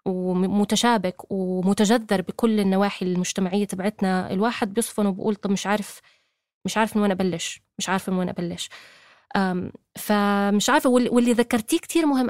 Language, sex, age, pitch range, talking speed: Arabic, female, 20-39, 190-225 Hz, 135 wpm